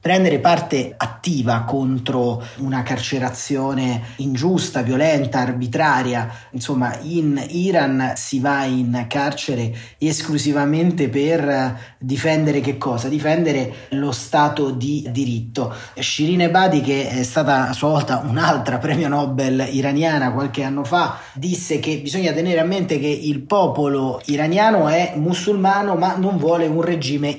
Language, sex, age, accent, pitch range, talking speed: Italian, male, 30-49, native, 135-165 Hz, 125 wpm